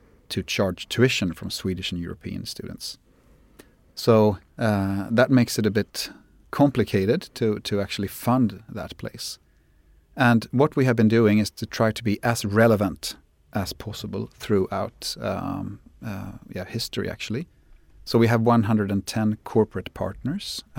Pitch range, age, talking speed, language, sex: 95-115 Hz, 30-49, 140 wpm, English, male